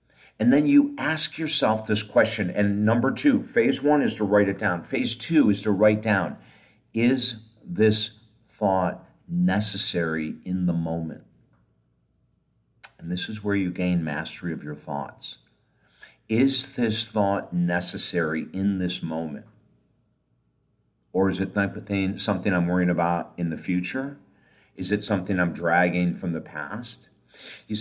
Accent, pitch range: American, 90-110 Hz